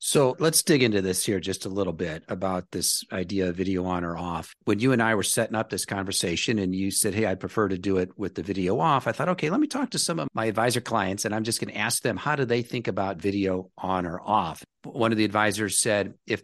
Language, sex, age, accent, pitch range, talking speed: English, male, 50-69, American, 95-115 Hz, 270 wpm